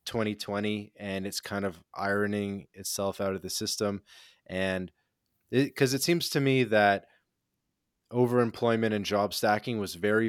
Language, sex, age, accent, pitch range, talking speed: English, male, 20-39, American, 95-110 Hz, 140 wpm